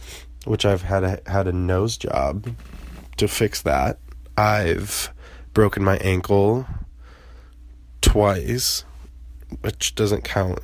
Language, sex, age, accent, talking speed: English, male, 20-39, American, 100 wpm